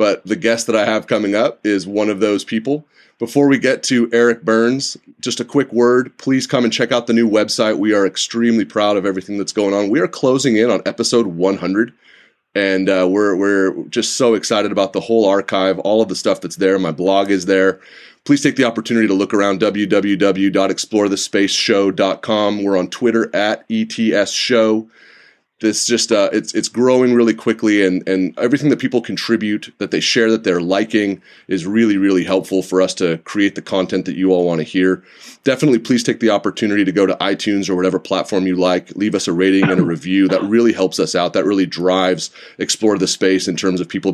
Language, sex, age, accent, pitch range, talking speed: English, male, 30-49, American, 95-115 Hz, 210 wpm